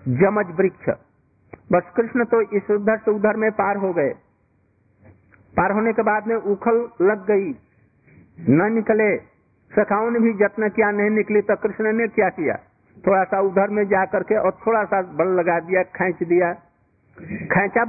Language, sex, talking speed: Hindi, male, 170 wpm